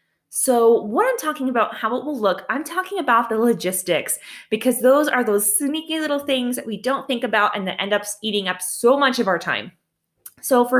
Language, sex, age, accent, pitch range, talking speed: English, female, 20-39, American, 195-265 Hz, 215 wpm